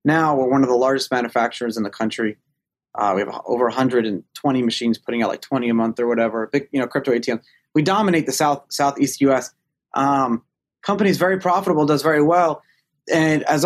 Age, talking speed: 30-49, 195 wpm